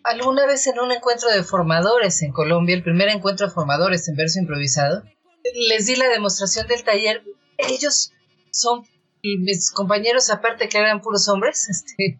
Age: 40-59